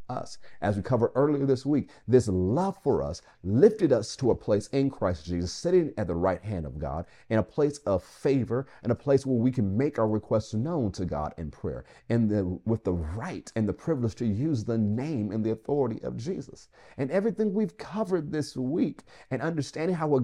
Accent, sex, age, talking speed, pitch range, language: American, male, 50-69, 215 wpm, 85-125 Hz, English